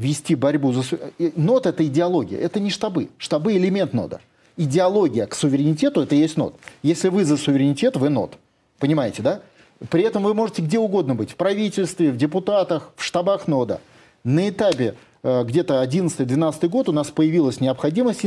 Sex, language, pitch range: male, Russian, 135-175 Hz